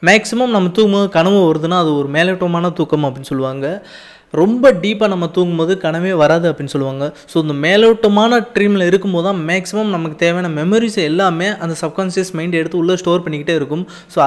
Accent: native